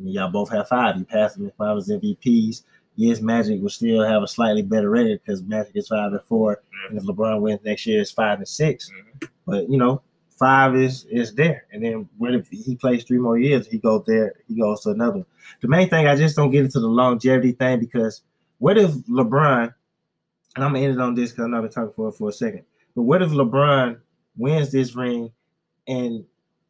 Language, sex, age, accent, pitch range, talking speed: English, male, 20-39, American, 115-145 Hz, 225 wpm